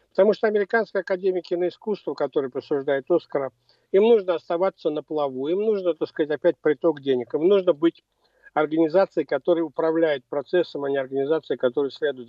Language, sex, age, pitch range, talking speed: Russian, male, 50-69, 145-180 Hz, 155 wpm